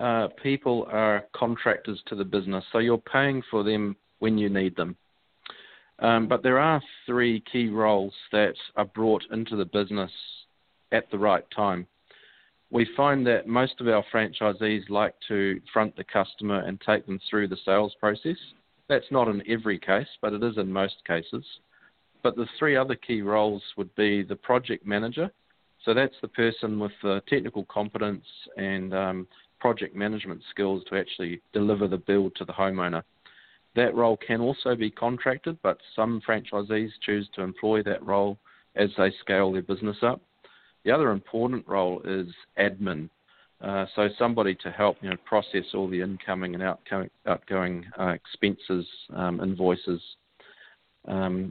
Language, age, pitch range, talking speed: English, 40-59, 95-115 Hz, 165 wpm